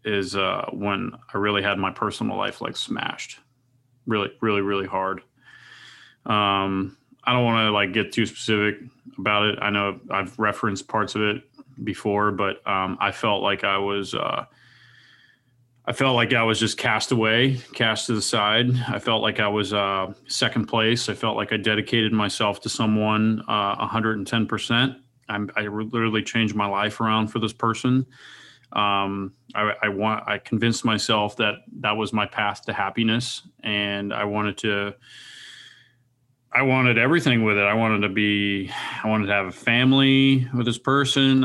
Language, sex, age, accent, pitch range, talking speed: English, male, 30-49, American, 105-125 Hz, 170 wpm